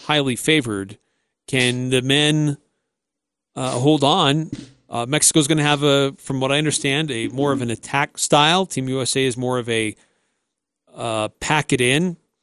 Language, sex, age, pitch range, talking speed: English, male, 40-59, 125-160 Hz, 165 wpm